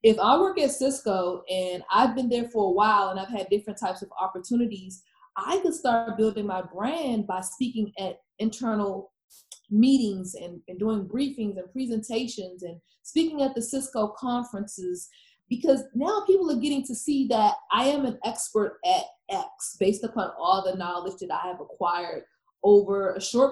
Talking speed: 175 wpm